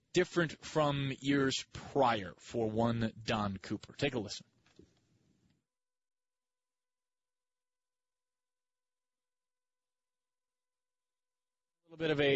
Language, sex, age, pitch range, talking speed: English, male, 30-49, 115-165 Hz, 55 wpm